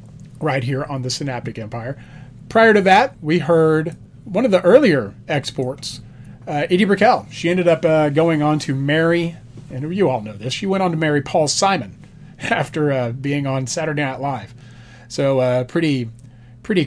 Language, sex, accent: English, male, American